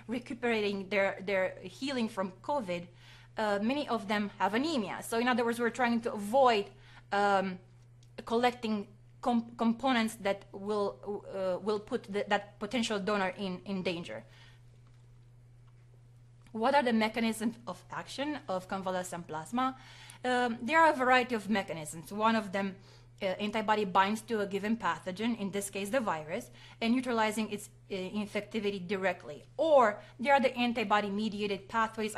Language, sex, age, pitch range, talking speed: English, female, 20-39, 175-225 Hz, 145 wpm